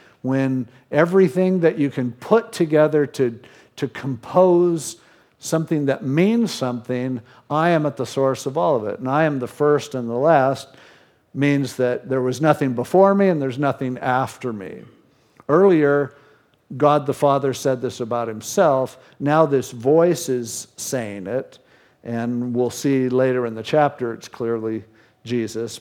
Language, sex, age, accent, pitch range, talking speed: English, male, 50-69, American, 125-160 Hz, 155 wpm